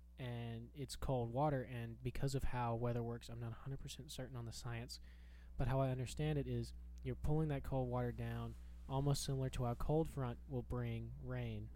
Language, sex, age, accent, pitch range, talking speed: English, male, 20-39, American, 110-135 Hz, 195 wpm